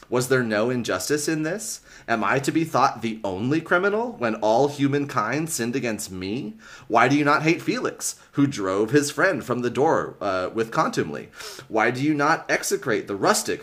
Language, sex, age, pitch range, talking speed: English, male, 30-49, 95-135 Hz, 190 wpm